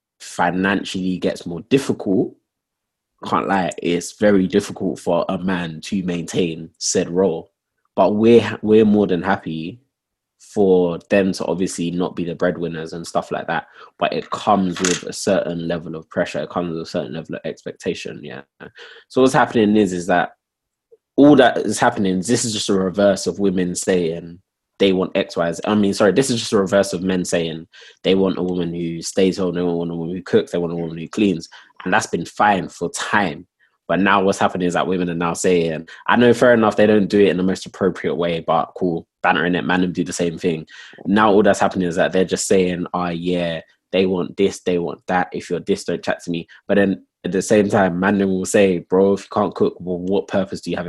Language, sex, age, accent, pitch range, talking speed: English, male, 20-39, British, 85-100 Hz, 220 wpm